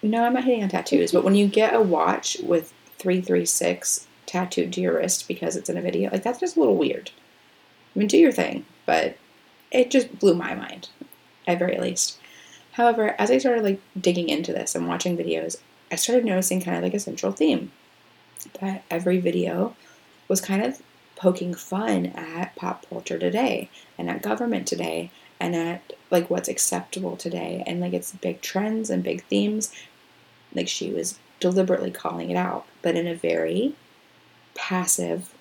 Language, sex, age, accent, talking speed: English, female, 30-49, American, 180 wpm